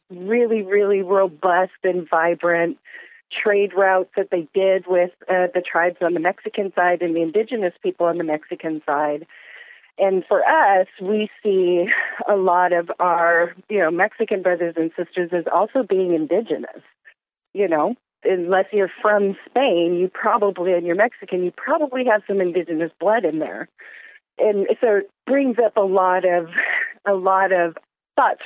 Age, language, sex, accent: 40-59, English, female, American